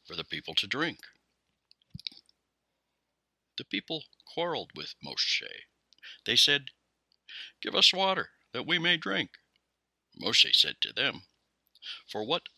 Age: 60-79